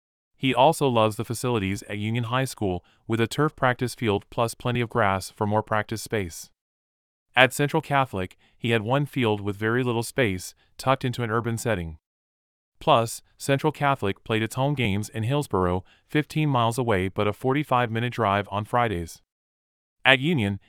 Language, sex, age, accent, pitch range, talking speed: English, male, 30-49, American, 95-125 Hz, 170 wpm